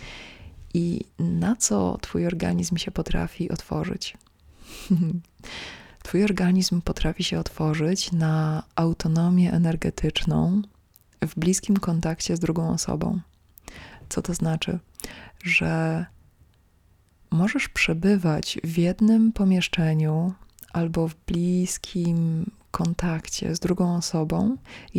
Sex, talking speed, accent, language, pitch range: female, 95 wpm, native, Polish, 160-185 Hz